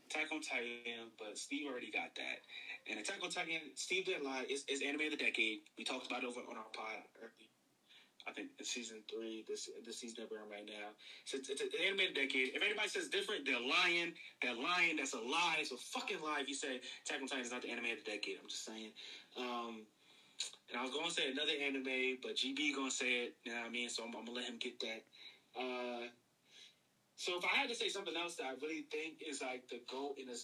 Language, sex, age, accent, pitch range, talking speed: English, male, 20-39, American, 125-170 Hz, 240 wpm